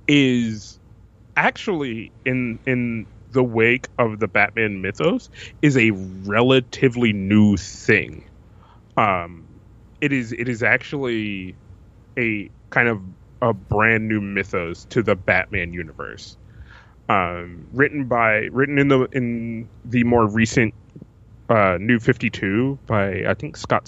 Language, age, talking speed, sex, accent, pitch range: English, 20-39, 125 wpm, male, American, 105-125 Hz